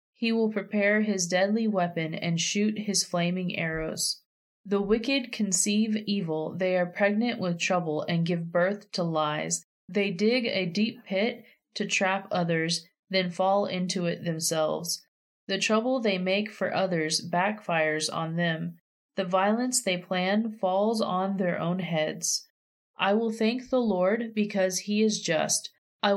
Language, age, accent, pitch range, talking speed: English, 20-39, American, 170-210 Hz, 150 wpm